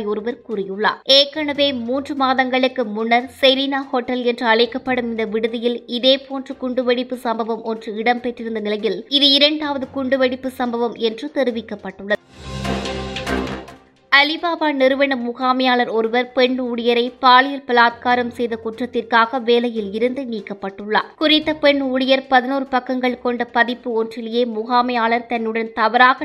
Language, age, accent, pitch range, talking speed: English, 20-39, Indian, 230-270 Hz, 115 wpm